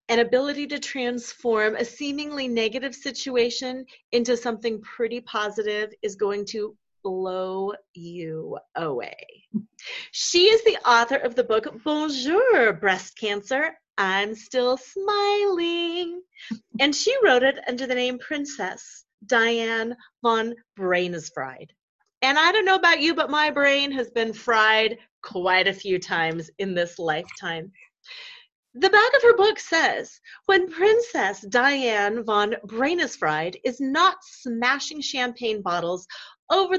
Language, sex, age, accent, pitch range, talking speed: English, female, 30-49, American, 205-290 Hz, 130 wpm